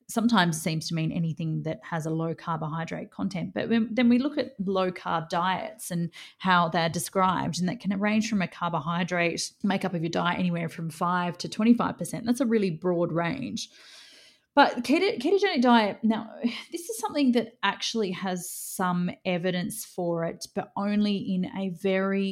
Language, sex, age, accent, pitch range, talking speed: English, female, 30-49, Australian, 170-205 Hz, 170 wpm